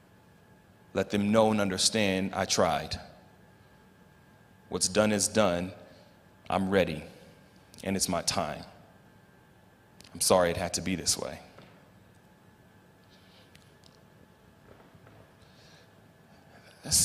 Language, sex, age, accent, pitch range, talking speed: English, male, 30-49, American, 95-130 Hz, 90 wpm